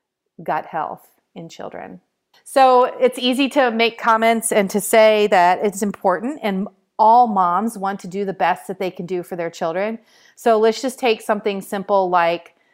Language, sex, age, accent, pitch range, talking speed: English, female, 40-59, American, 180-220 Hz, 180 wpm